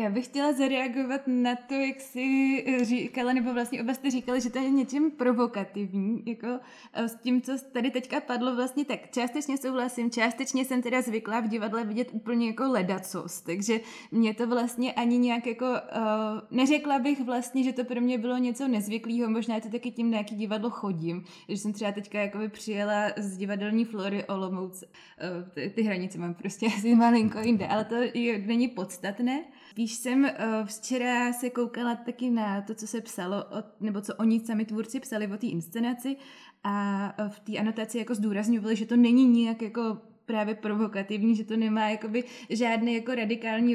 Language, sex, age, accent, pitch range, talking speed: Czech, female, 20-39, native, 215-250 Hz, 175 wpm